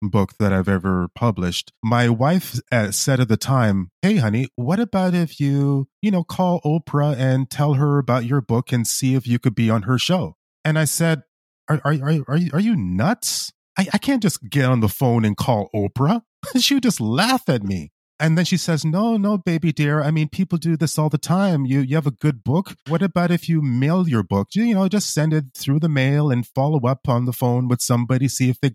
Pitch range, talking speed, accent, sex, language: 120-165 Hz, 235 wpm, American, male, English